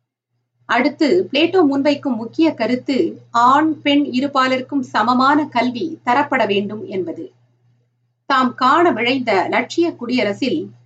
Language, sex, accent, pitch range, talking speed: Tamil, female, native, 215-285 Hz, 100 wpm